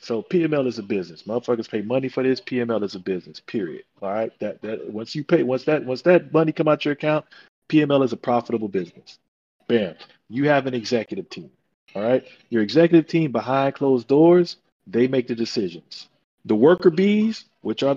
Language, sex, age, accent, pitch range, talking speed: English, male, 40-59, American, 135-210 Hz, 195 wpm